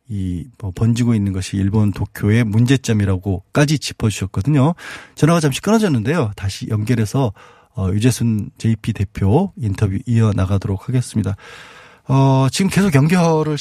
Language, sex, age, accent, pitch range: Korean, male, 20-39, native, 105-135 Hz